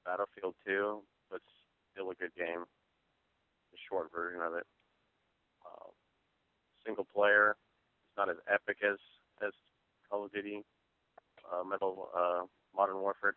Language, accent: English, American